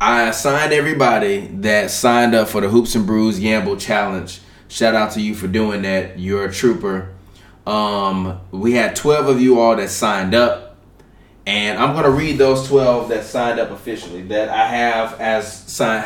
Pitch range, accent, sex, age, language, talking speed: 110-130 Hz, American, male, 20-39, English, 185 wpm